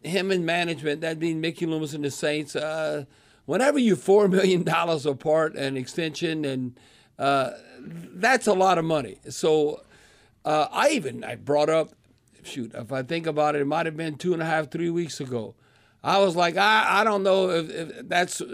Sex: male